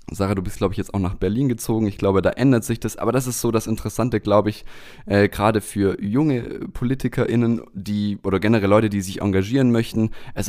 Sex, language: male, German